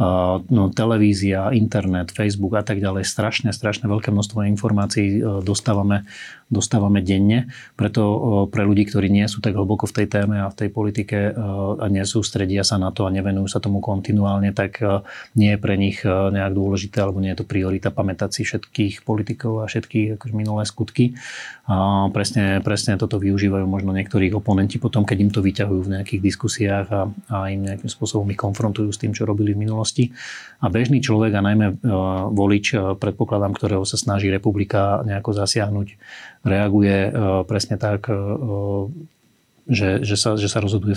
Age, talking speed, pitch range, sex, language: 30-49, 165 wpm, 100-110 Hz, male, Slovak